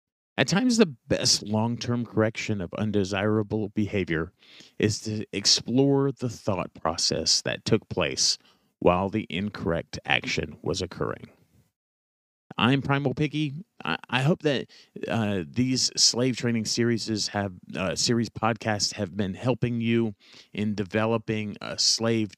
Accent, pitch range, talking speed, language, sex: American, 105-125 Hz, 130 wpm, English, male